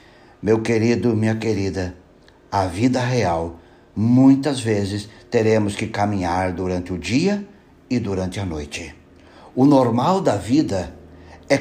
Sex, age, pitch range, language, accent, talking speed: male, 60-79, 95-120 Hz, Portuguese, Brazilian, 125 wpm